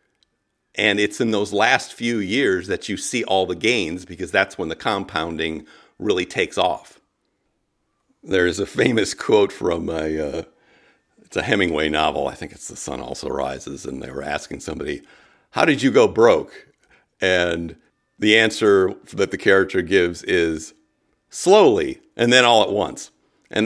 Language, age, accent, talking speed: English, 50-69, American, 165 wpm